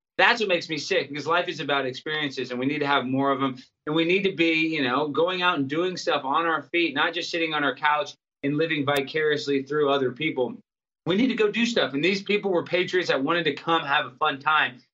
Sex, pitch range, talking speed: male, 150-225 Hz, 255 wpm